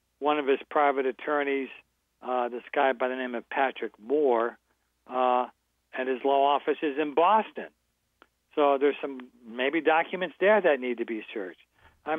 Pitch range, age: 115-145 Hz, 60-79